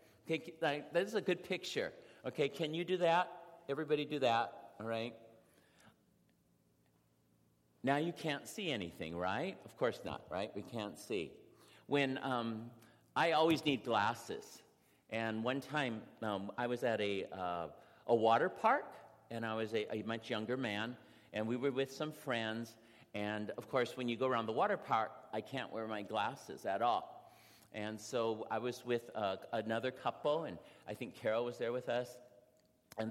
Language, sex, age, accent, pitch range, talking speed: English, male, 50-69, American, 115-160 Hz, 175 wpm